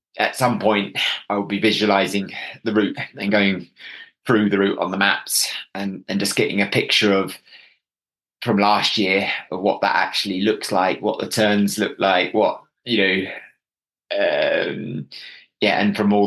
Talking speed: 170 wpm